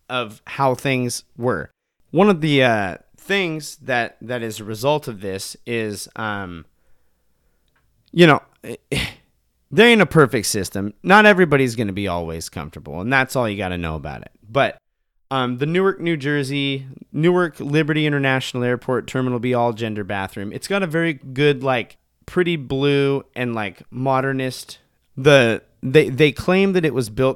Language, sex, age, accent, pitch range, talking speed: English, male, 30-49, American, 110-155 Hz, 165 wpm